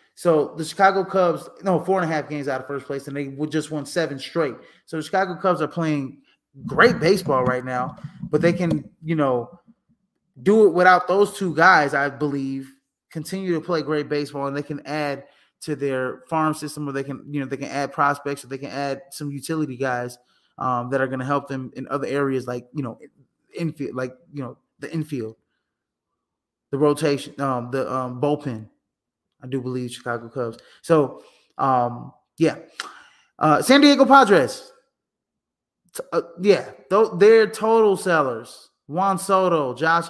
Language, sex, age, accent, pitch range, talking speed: English, male, 20-39, American, 135-175 Hz, 175 wpm